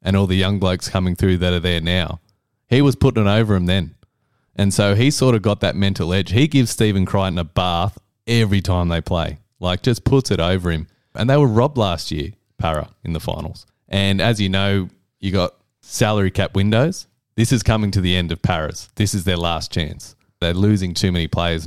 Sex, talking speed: male, 220 wpm